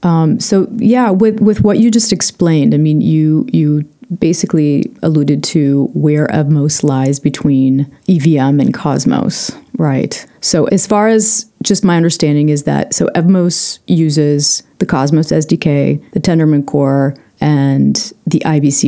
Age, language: 30-49, English